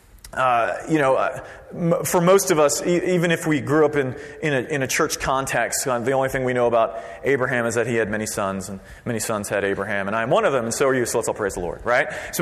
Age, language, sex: 30-49, English, male